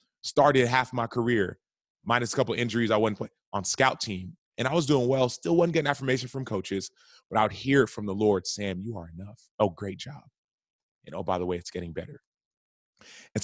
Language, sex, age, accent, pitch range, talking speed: English, male, 30-49, American, 95-115 Hz, 215 wpm